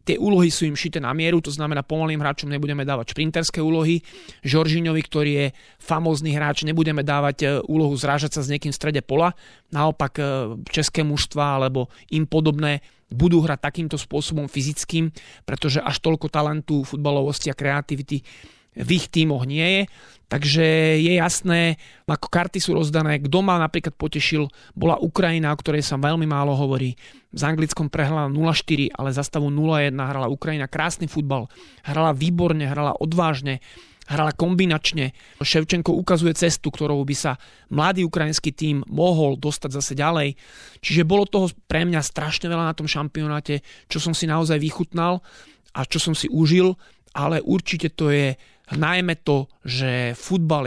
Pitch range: 140-160 Hz